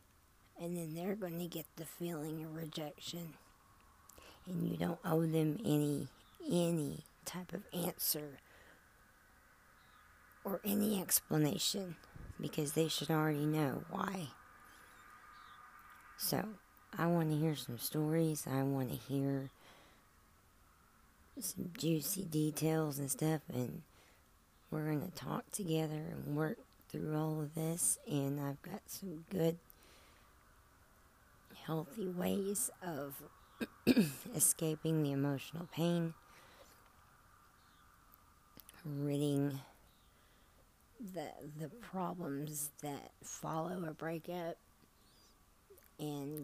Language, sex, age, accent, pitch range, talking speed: English, female, 40-59, American, 145-170 Hz, 100 wpm